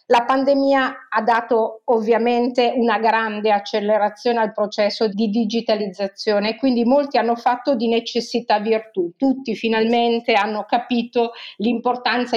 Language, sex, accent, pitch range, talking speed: Italian, female, native, 205-235 Hz, 120 wpm